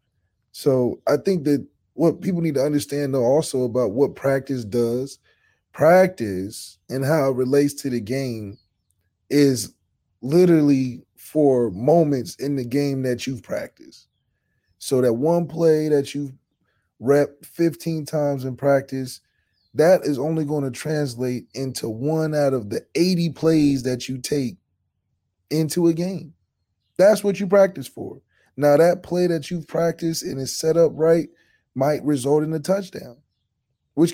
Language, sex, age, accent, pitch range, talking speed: English, male, 20-39, American, 120-165 Hz, 150 wpm